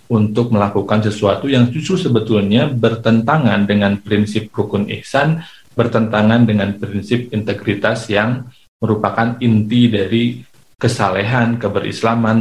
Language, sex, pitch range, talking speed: Indonesian, male, 100-120 Hz, 100 wpm